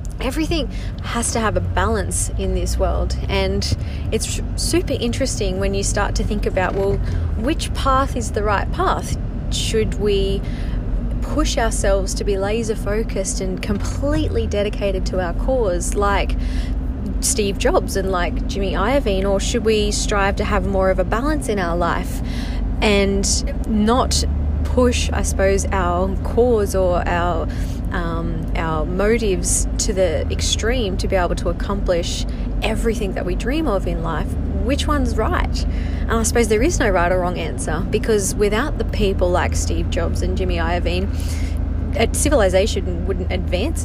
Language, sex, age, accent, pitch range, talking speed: English, female, 20-39, Australian, 80-95 Hz, 155 wpm